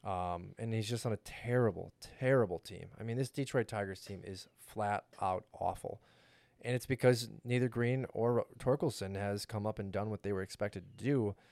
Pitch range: 105-130 Hz